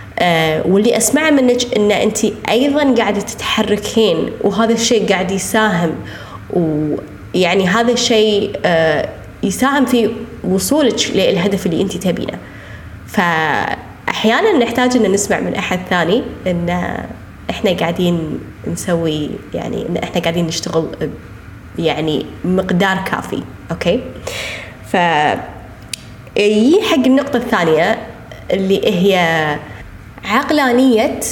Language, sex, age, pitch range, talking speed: Arabic, female, 20-39, 170-225 Hz, 100 wpm